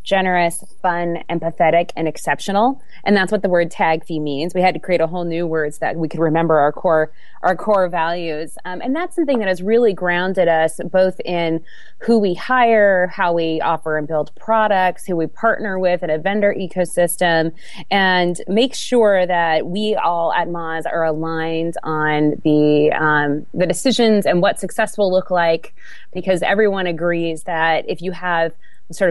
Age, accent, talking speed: 30-49, American, 180 wpm